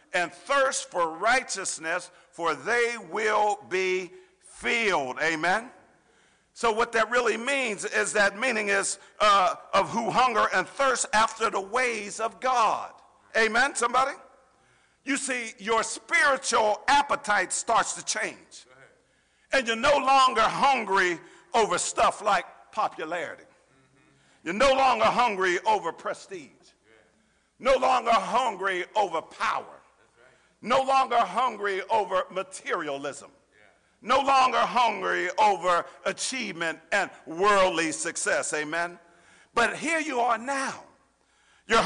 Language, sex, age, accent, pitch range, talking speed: English, male, 50-69, American, 210-275 Hz, 115 wpm